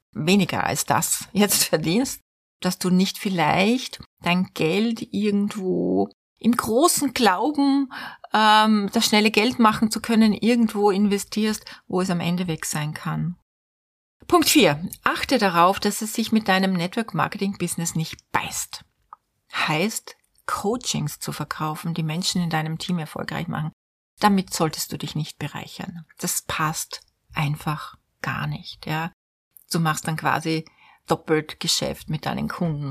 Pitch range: 155-215 Hz